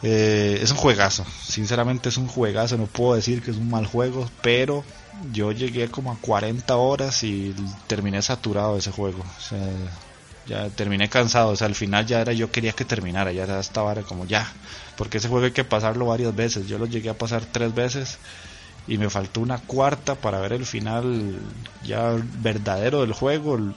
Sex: male